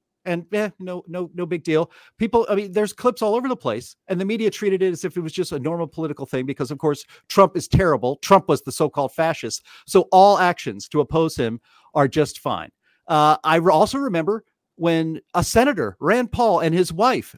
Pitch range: 150-205 Hz